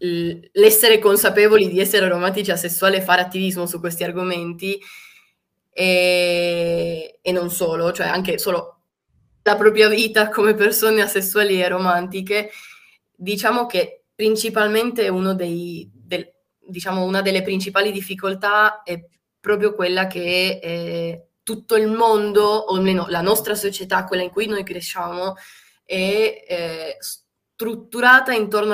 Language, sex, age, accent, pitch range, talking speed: Italian, female, 20-39, native, 180-215 Hz, 125 wpm